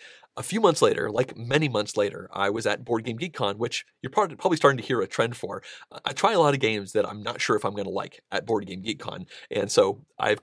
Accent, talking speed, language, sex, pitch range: American, 260 wpm, English, male, 105-140 Hz